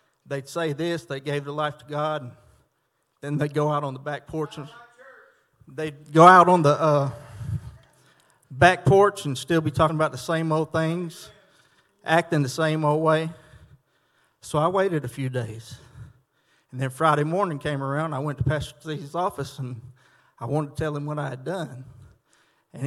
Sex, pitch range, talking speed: male, 135-160 Hz, 180 wpm